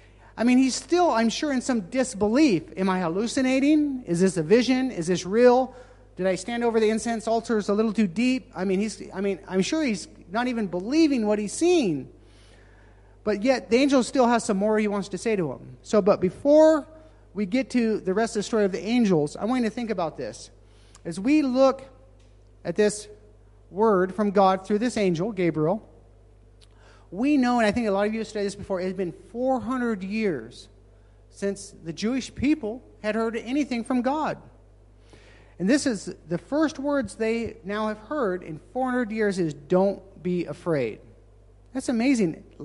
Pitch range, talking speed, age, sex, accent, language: 175-245 Hz, 190 wpm, 40-59, male, American, English